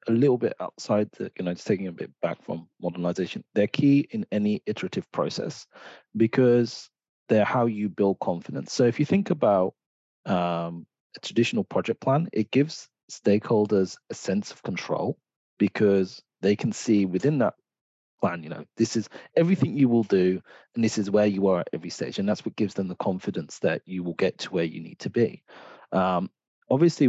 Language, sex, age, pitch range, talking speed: English, male, 30-49, 95-125 Hz, 190 wpm